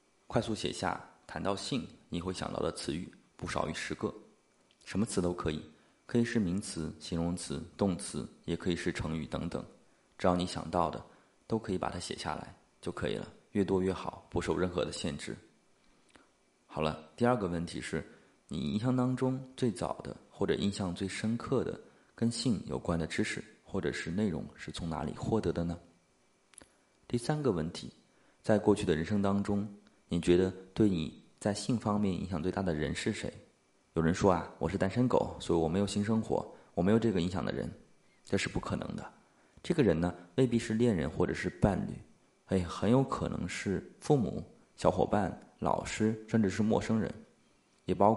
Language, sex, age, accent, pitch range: Chinese, male, 30-49, native, 85-110 Hz